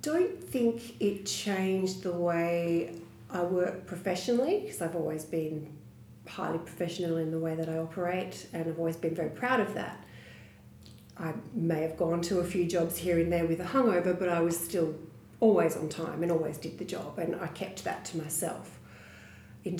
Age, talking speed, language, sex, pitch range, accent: 40-59, 190 wpm, English, female, 160-180 Hz, Australian